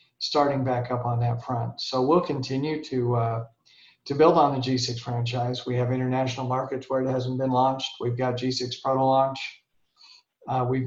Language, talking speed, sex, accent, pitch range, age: English, 180 wpm, male, American, 125-145 Hz, 50-69